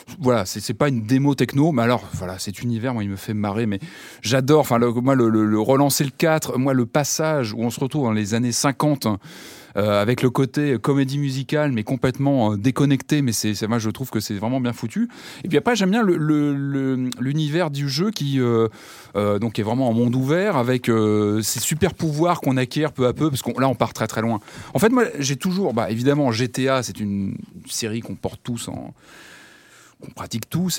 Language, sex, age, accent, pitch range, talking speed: French, male, 30-49, French, 115-145 Hz, 225 wpm